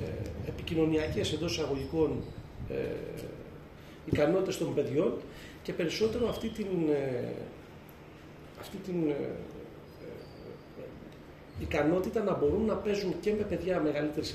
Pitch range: 140-180 Hz